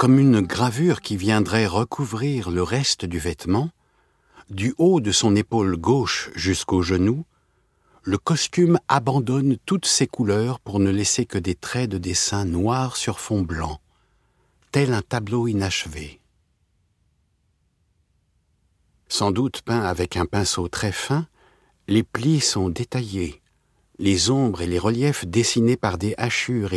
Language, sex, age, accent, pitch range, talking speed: French, male, 60-79, French, 90-120 Hz, 135 wpm